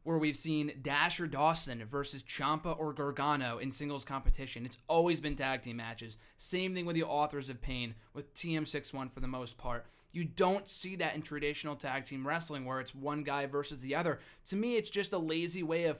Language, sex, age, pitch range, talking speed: English, male, 20-39, 140-180 Hz, 205 wpm